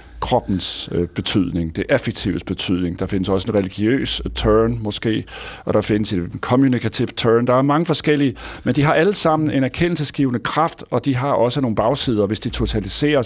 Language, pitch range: Danish, 110-140 Hz